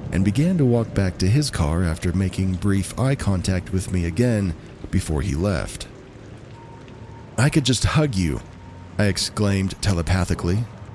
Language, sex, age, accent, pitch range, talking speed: English, male, 40-59, American, 90-115 Hz, 150 wpm